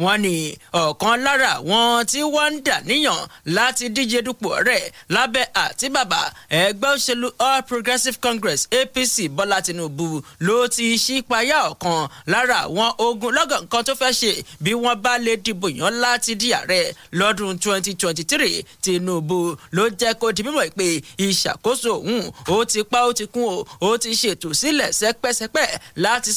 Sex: male